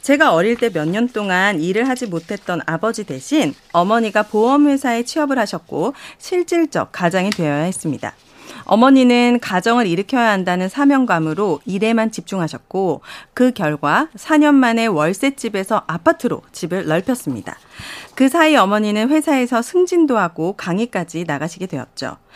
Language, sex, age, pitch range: Korean, female, 40-59, 175-265 Hz